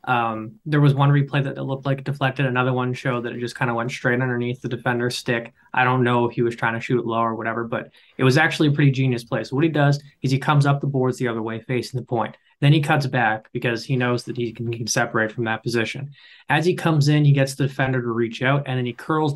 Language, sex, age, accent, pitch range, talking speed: English, male, 20-39, American, 120-145 Hz, 290 wpm